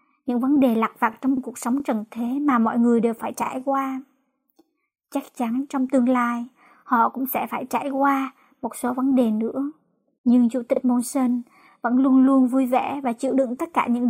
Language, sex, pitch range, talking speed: Vietnamese, male, 240-270 Hz, 215 wpm